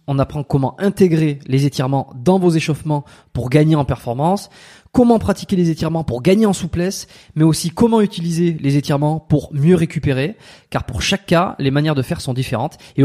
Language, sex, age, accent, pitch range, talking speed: French, male, 20-39, French, 140-185 Hz, 190 wpm